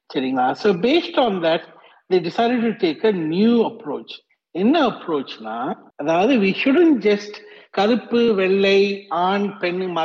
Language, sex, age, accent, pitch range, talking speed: Tamil, male, 60-79, native, 160-235 Hz, 130 wpm